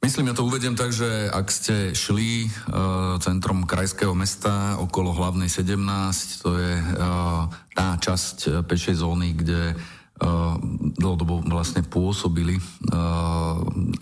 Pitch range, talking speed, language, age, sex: 85-95 Hz, 130 wpm, Slovak, 40-59, male